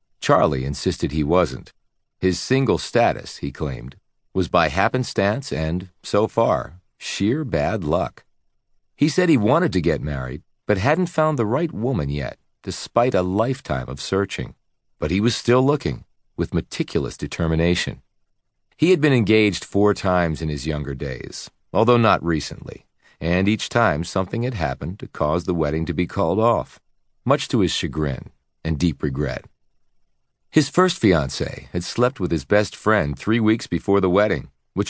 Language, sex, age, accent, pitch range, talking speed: English, male, 50-69, American, 75-105 Hz, 160 wpm